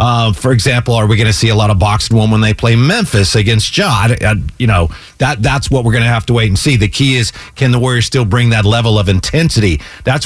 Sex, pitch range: male, 115-145 Hz